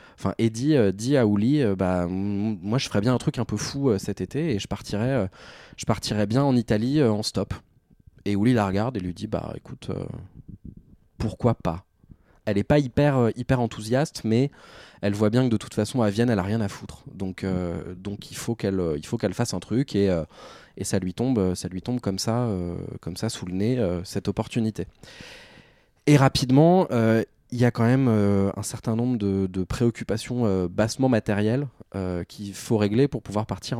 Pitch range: 95-120 Hz